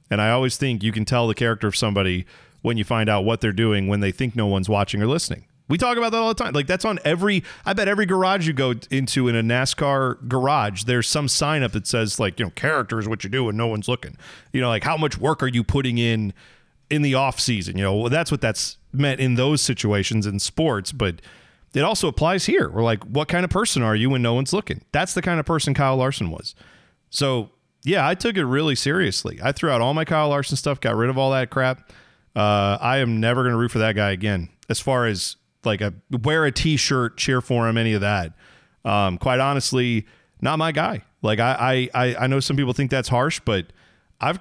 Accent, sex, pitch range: American, male, 110-145 Hz